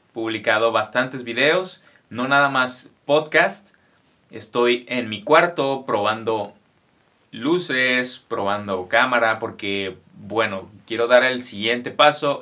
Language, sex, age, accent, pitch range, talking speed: English, male, 30-49, Mexican, 110-145 Hz, 105 wpm